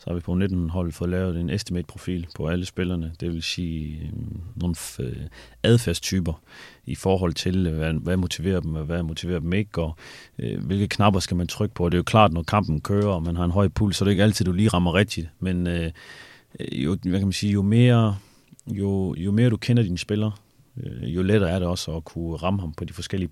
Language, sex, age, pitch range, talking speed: Danish, male, 30-49, 85-100 Hz, 225 wpm